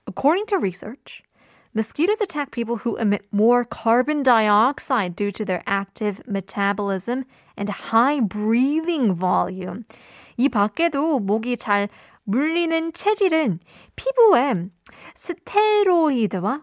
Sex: female